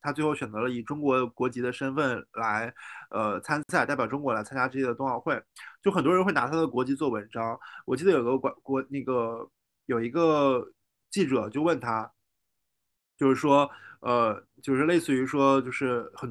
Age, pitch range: 20-39, 125-150 Hz